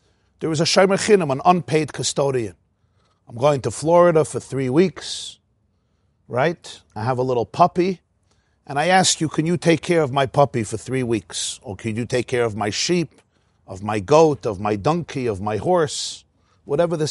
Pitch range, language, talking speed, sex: 115-175 Hz, English, 190 wpm, male